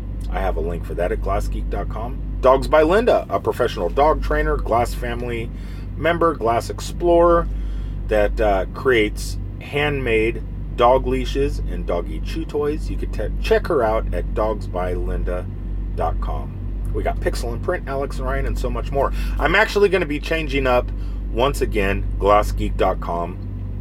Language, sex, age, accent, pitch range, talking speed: English, male, 30-49, American, 90-110 Hz, 150 wpm